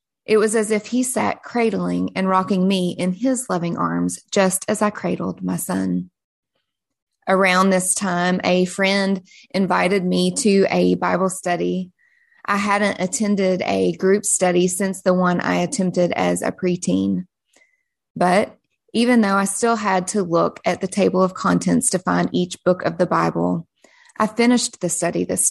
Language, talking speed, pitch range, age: English, 165 wpm, 180-210 Hz, 20-39